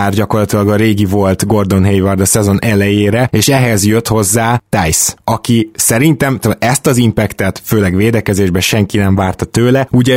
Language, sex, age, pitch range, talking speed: Hungarian, male, 20-39, 100-120 Hz, 155 wpm